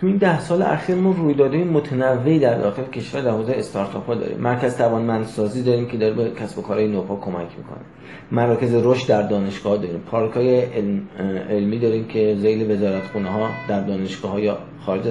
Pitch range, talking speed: 115-150 Hz, 175 wpm